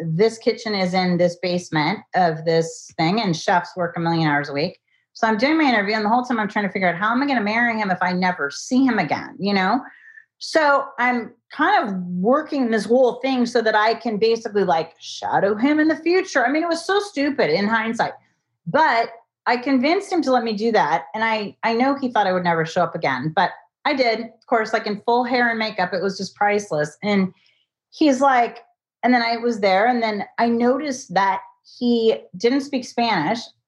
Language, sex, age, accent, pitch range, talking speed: English, female, 30-49, American, 180-250 Hz, 225 wpm